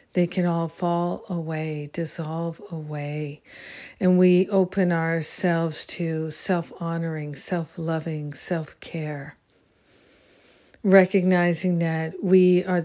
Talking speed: 90 wpm